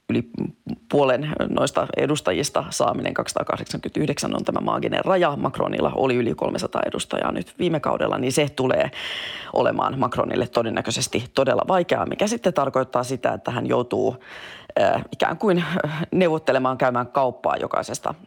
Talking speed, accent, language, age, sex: 130 wpm, native, Finnish, 30-49, female